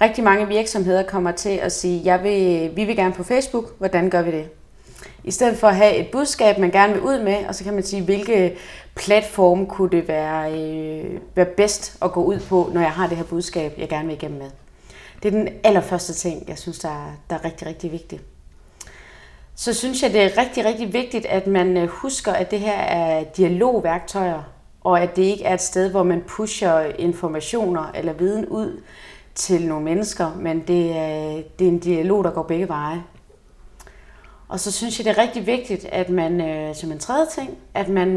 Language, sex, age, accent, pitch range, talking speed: Danish, female, 30-49, native, 165-200 Hz, 210 wpm